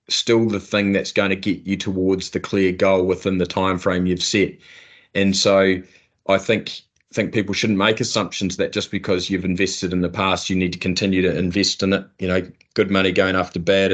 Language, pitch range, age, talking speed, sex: English, 95-105 Hz, 20-39, 215 wpm, male